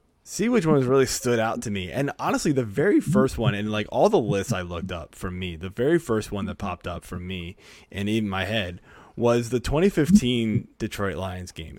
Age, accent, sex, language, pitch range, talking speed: 20-39, American, male, English, 95-120 Hz, 220 wpm